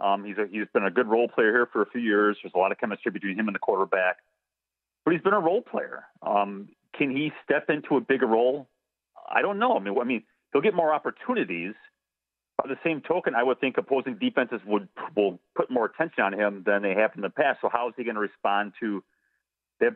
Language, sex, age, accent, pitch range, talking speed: English, male, 40-59, American, 100-140 Hz, 240 wpm